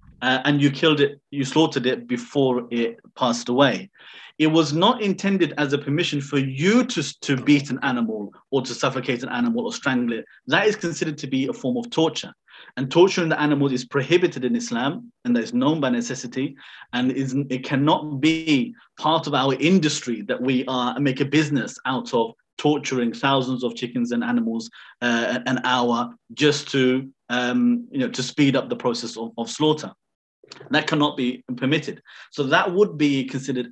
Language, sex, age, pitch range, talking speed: English, male, 30-49, 125-160 Hz, 185 wpm